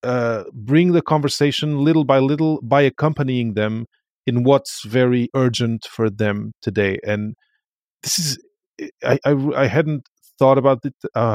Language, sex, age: English, male, 30-49